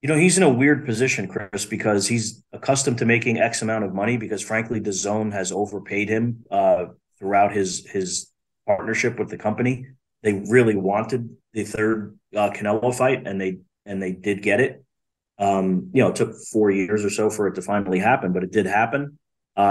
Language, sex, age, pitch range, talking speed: English, male, 30-49, 100-120 Hz, 200 wpm